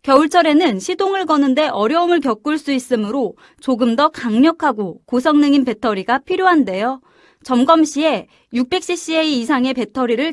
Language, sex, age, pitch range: Korean, female, 20-39, 240-320 Hz